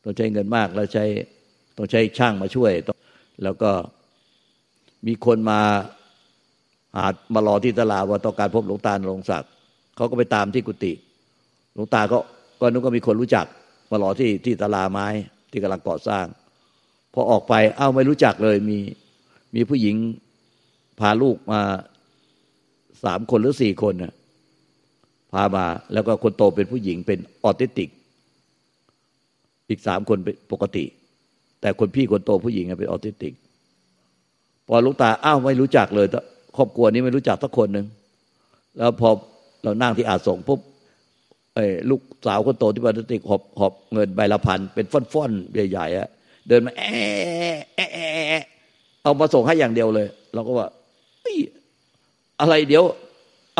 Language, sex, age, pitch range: Thai, male, 60-79, 100-125 Hz